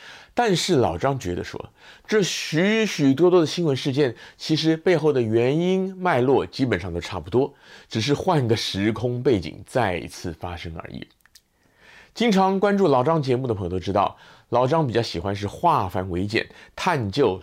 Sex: male